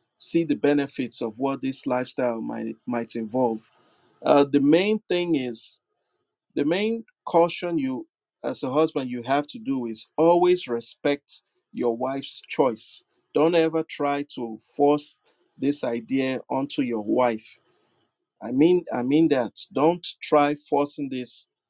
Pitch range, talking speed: 125-155 Hz, 140 wpm